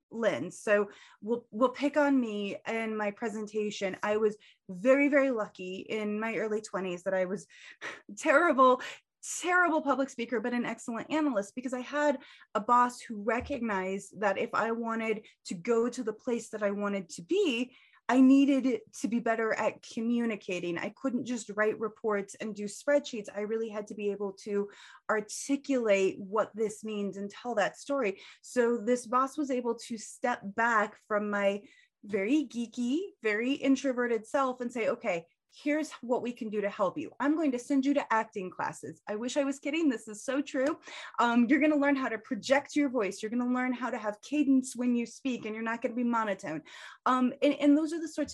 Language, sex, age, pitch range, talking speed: English, female, 20-39, 215-275 Hz, 190 wpm